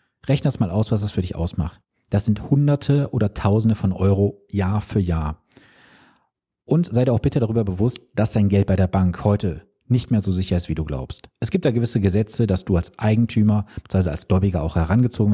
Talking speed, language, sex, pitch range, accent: 215 wpm, German, male, 95-125 Hz, German